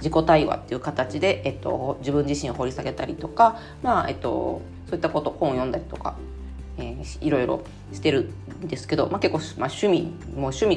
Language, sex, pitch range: Japanese, female, 140-205 Hz